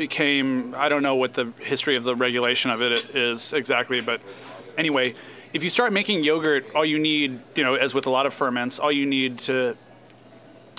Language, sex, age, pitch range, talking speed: English, male, 30-49, 125-150 Hz, 200 wpm